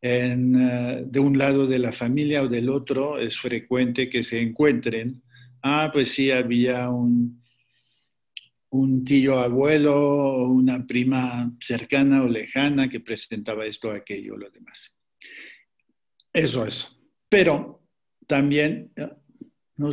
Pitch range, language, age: 120-140 Hz, Spanish, 50-69